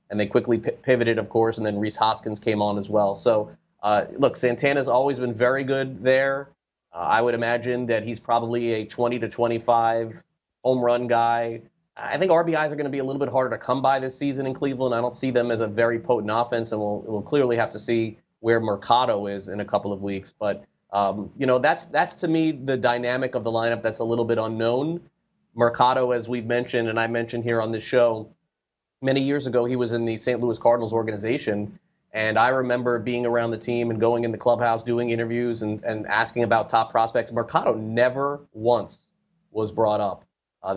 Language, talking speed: English, 215 wpm